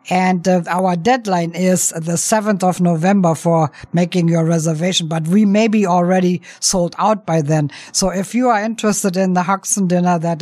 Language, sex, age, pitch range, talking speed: English, female, 50-69, 170-200 Hz, 185 wpm